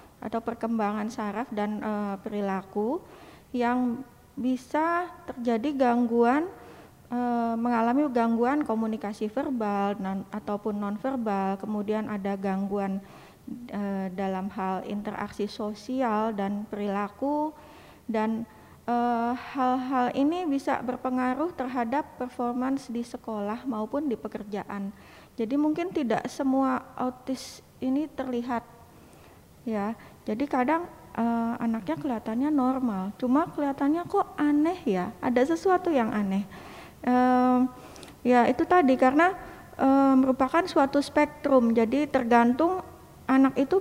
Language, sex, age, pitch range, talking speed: Indonesian, female, 30-49, 215-275 Hz, 105 wpm